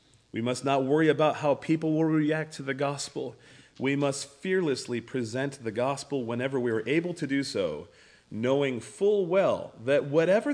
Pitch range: 110-150 Hz